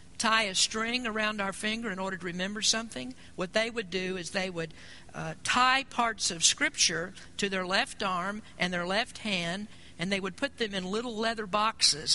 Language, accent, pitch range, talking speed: English, American, 180-225 Hz, 200 wpm